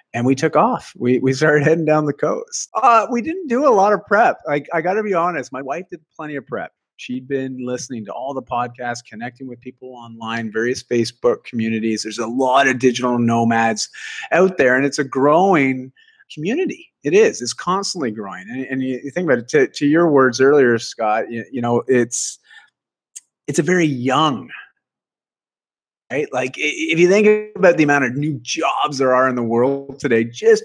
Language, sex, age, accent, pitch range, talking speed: English, male, 30-49, American, 125-185 Hz, 200 wpm